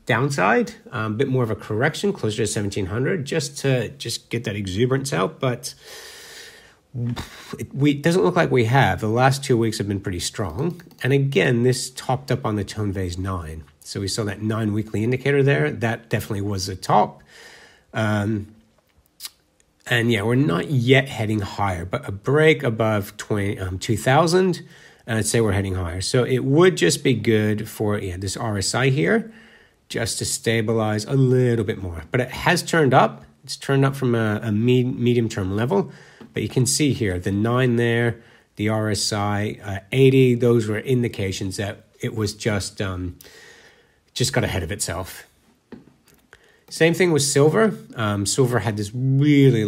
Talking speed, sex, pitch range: 170 wpm, male, 105-135 Hz